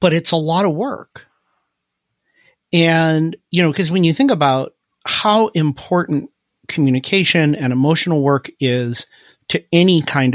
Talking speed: 140 wpm